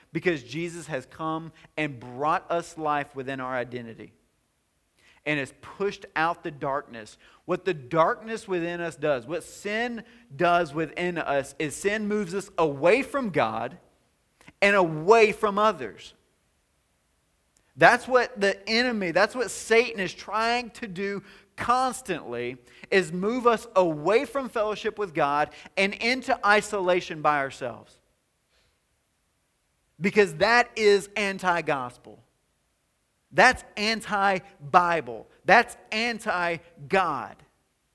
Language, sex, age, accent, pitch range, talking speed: English, male, 40-59, American, 150-215 Hz, 115 wpm